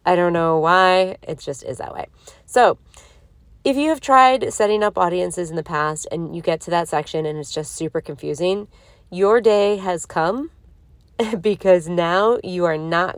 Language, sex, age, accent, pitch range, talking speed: English, female, 30-49, American, 155-185 Hz, 180 wpm